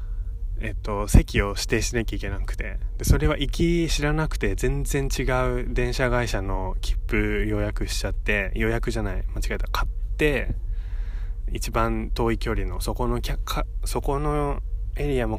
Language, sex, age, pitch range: Japanese, male, 20-39, 95-125 Hz